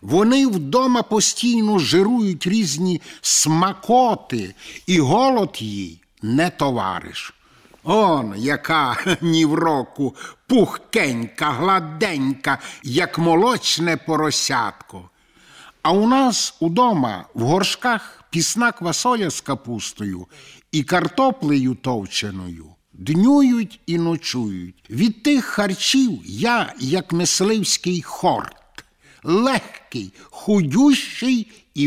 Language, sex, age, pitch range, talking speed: Ukrainian, male, 60-79, 140-210 Hz, 90 wpm